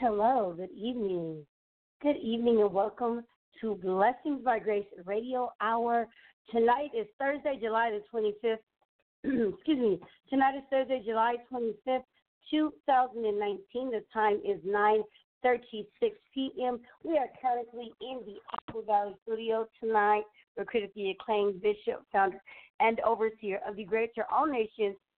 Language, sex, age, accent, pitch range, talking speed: English, female, 40-59, American, 205-240 Hz, 145 wpm